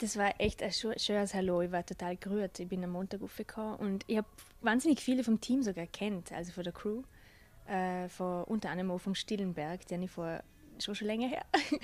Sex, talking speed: female, 210 wpm